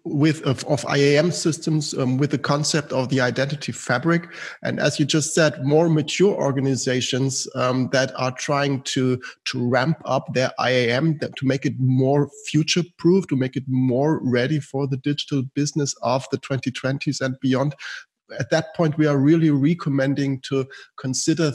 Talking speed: 165 wpm